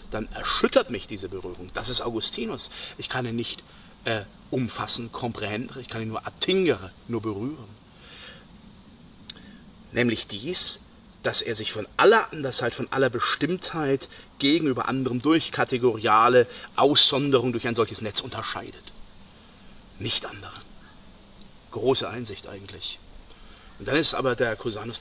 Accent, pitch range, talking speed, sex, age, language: German, 115-165 Hz, 130 wpm, male, 40-59, German